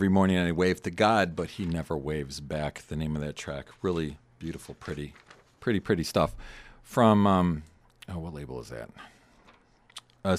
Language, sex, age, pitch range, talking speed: English, male, 40-59, 75-100 Hz, 175 wpm